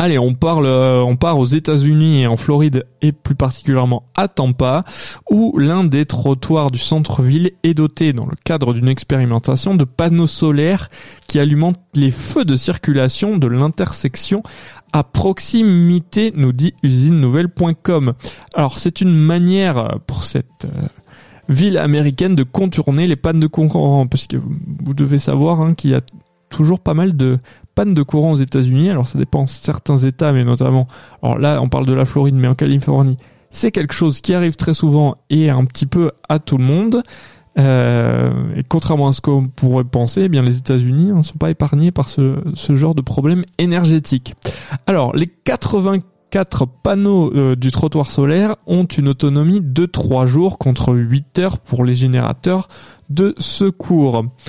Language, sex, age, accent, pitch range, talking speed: French, male, 20-39, French, 130-170 Hz, 175 wpm